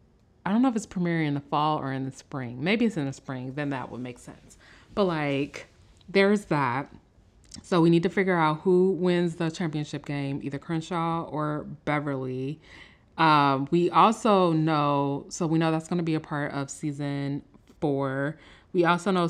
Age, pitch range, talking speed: 30-49, 140-175 Hz, 190 wpm